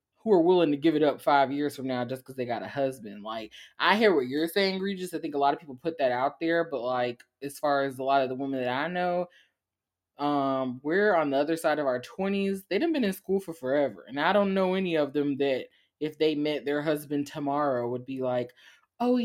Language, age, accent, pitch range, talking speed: English, 20-39, American, 135-165 Hz, 255 wpm